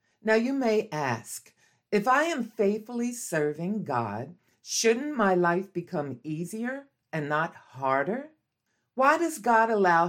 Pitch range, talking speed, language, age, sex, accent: 140-210 Hz, 130 wpm, English, 50-69, female, American